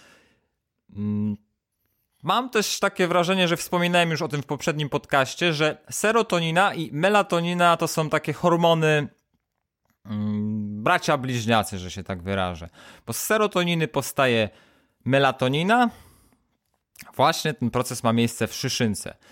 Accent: native